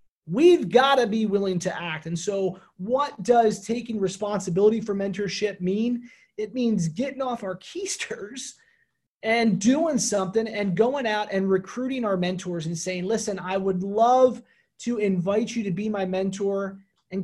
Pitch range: 180-235 Hz